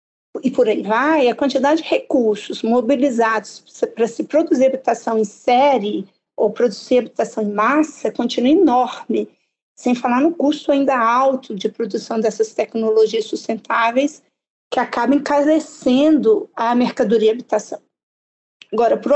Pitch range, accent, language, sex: 225-290 Hz, Brazilian, English, female